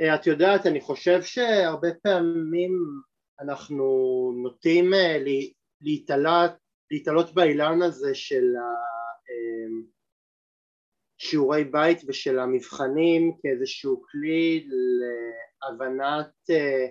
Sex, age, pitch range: male, 30-49, 135-175 Hz